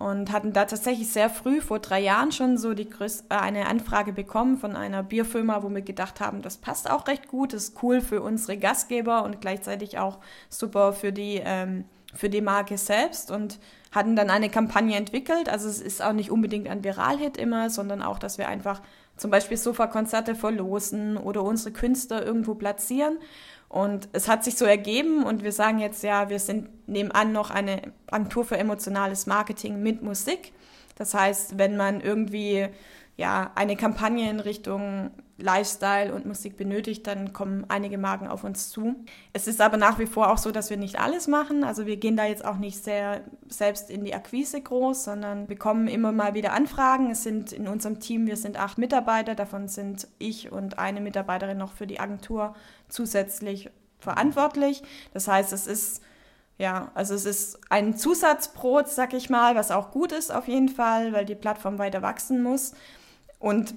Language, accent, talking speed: German, German, 185 wpm